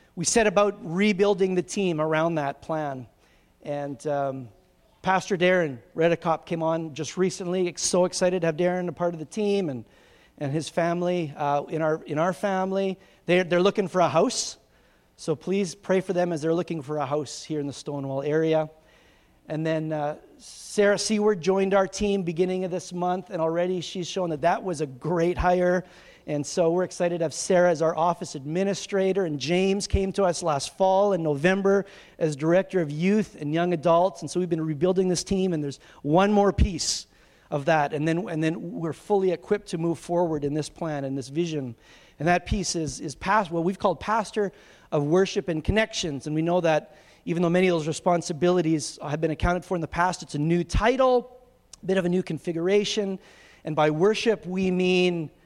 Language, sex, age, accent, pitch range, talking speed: English, male, 40-59, American, 155-190 Hz, 200 wpm